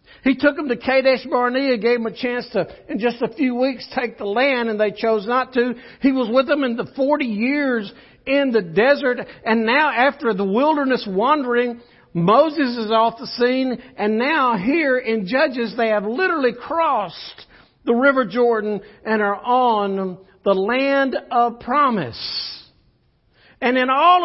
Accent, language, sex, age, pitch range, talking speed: American, English, male, 60-79, 215-280 Hz, 170 wpm